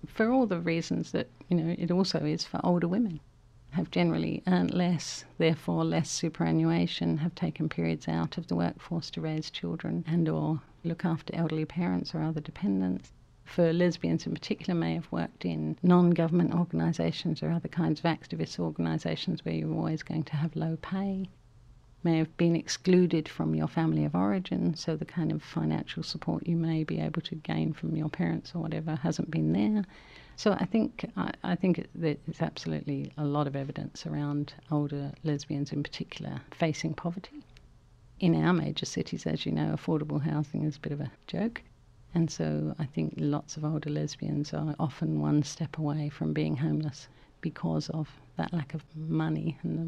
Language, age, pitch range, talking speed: English, 50-69, 115-170 Hz, 180 wpm